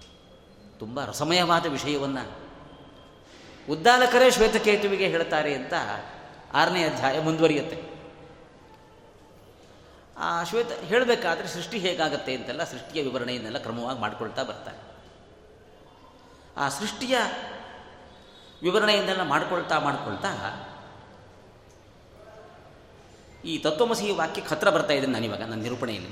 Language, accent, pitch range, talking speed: Kannada, native, 125-190 Hz, 80 wpm